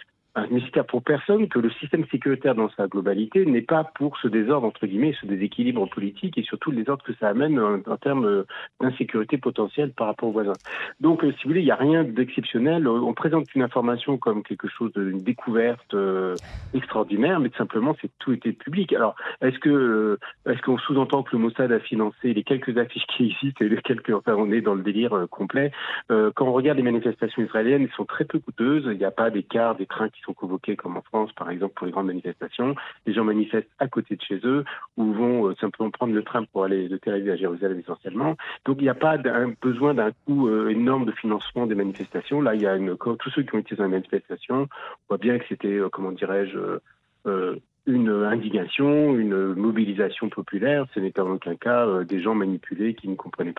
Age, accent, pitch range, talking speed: 40-59, French, 100-130 Hz, 225 wpm